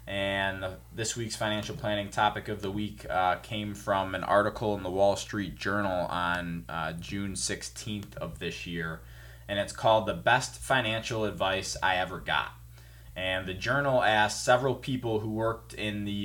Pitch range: 85-110 Hz